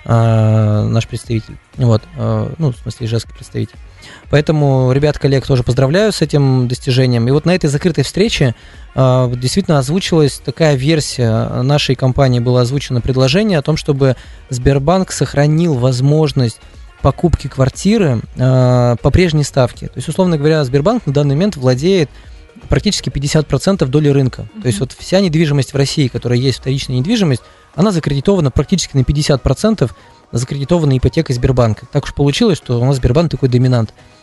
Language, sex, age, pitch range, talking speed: Russian, male, 20-39, 125-165 Hz, 145 wpm